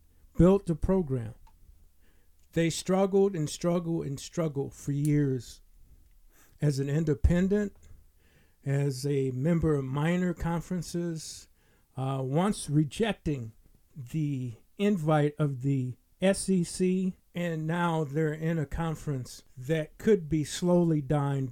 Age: 50-69